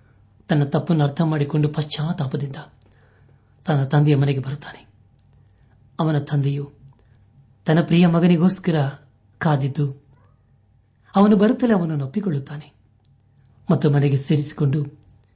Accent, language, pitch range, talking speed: native, Kannada, 110-155 Hz, 85 wpm